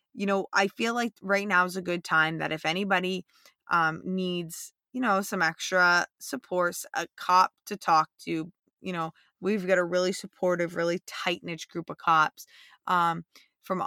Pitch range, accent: 160-185 Hz, American